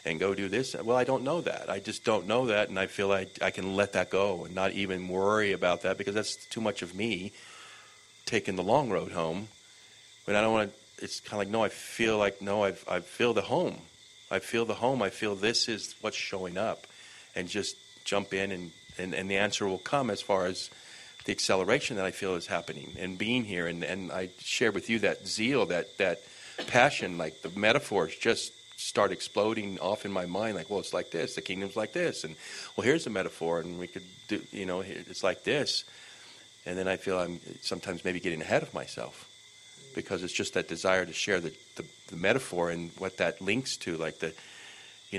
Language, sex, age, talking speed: English, male, 40-59, 225 wpm